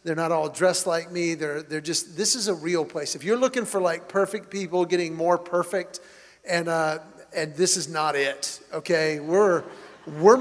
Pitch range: 170-210 Hz